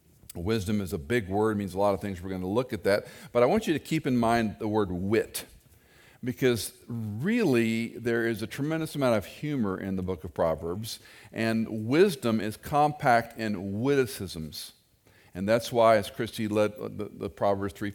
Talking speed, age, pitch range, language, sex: 190 wpm, 50-69, 100-120 Hz, English, male